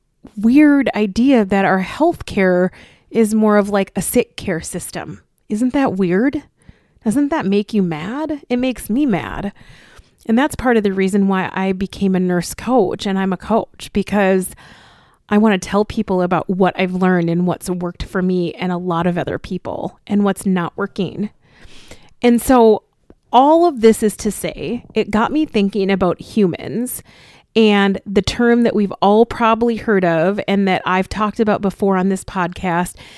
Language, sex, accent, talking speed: English, female, American, 180 wpm